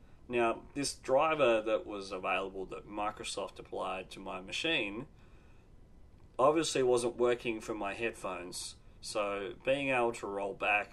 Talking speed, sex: 130 wpm, male